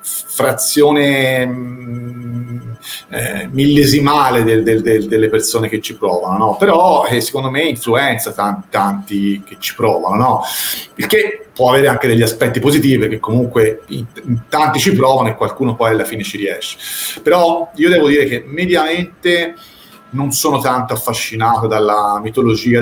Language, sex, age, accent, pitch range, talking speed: Italian, male, 40-59, native, 115-155 Hz, 155 wpm